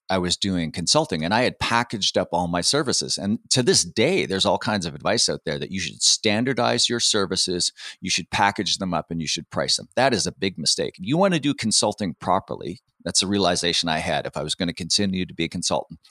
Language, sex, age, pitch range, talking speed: English, male, 40-59, 90-125 Hz, 245 wpm